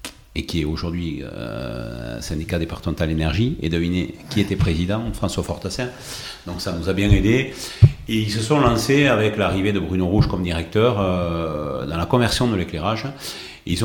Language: French